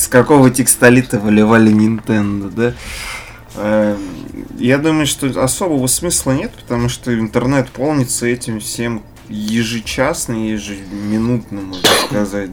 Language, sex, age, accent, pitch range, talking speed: Russian, male, 20-39, native, 105-125 Hz, 105 wpm